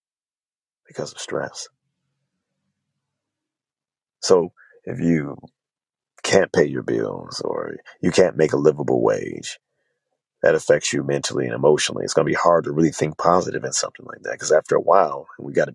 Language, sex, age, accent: English, male, 30-49, American